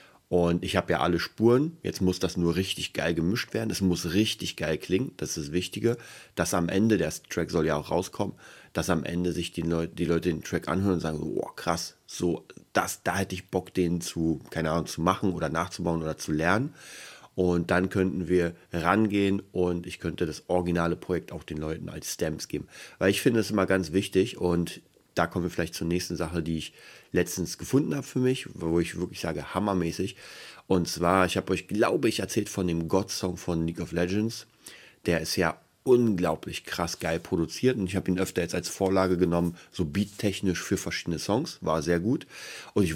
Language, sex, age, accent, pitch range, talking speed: German, male, 30-49, German, 85-100 Hz, 205 wpm